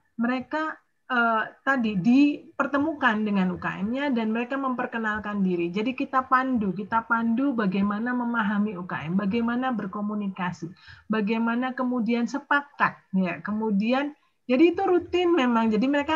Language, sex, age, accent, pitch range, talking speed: Indonesian, female, 30-49, native, 210-265 Hz, 115 wpm